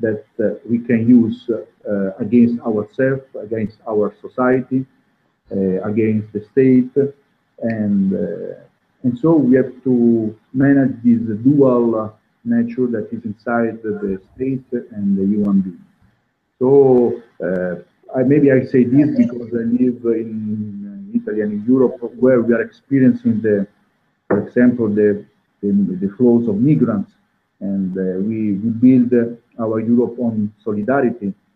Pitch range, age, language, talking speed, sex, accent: 105-125 Hz, 50-69, English, 130 wpm, male, Italian